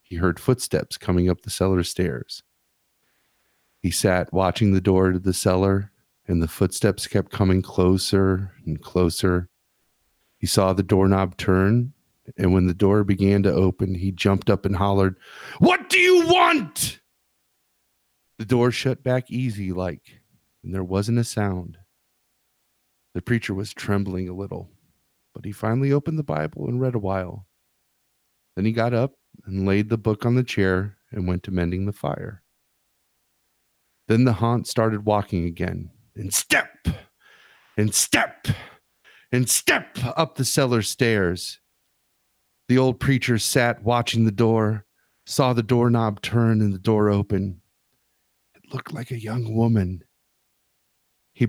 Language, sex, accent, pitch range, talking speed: English, male, American, 95-120 Hz, 150 wpm